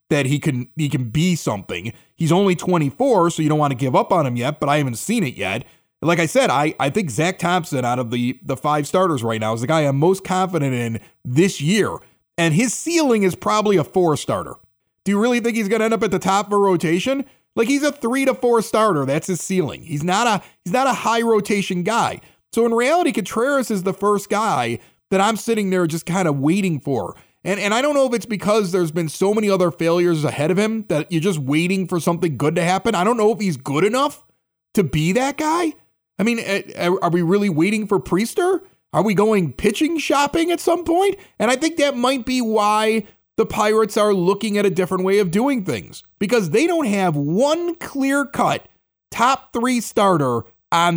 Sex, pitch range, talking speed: male, 160-225 Hz, 220 wpm